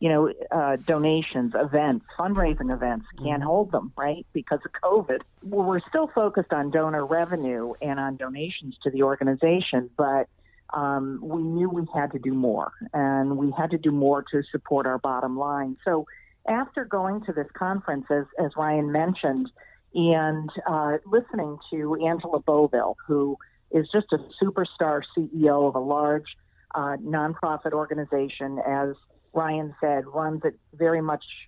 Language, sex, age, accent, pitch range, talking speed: English, female, 50-69, American, 140-185 Hz, 155 wpm